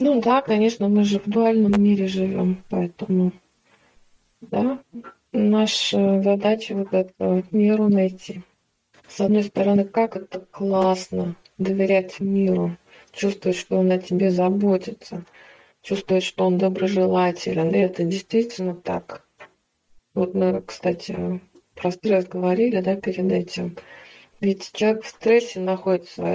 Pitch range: 180-205 Hz